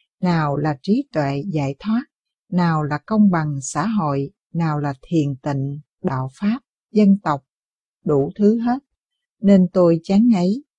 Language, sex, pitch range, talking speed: Vietnamese, female, 160-205 Hz, 150 wpm